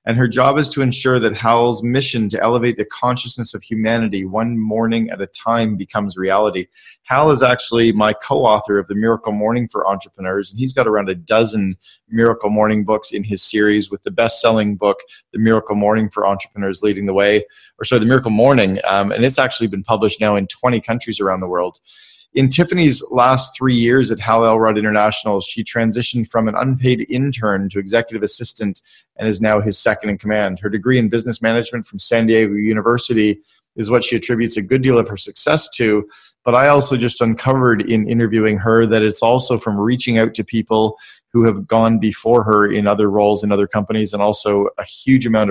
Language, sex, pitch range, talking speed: English, male, 105-120 Hz, 200 wpm